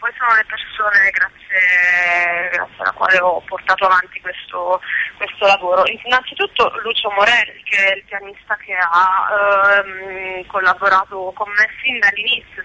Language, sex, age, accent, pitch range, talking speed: Italian, female, 20-39, native, 190-220 Hz, 140 wpm